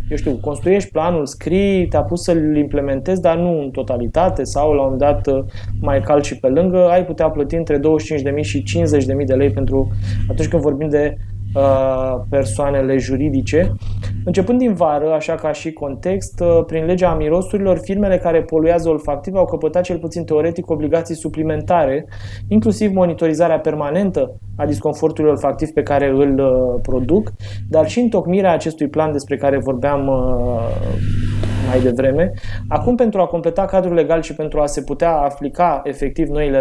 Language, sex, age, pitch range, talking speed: Romanian, male, 20-39, 130-165 Hz, 155 wpm